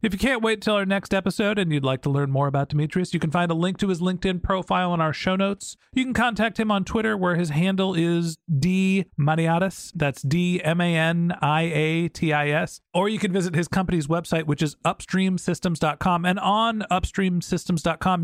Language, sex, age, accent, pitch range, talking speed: English, male, 40-59, American, 155-190 Hz, 180 wpm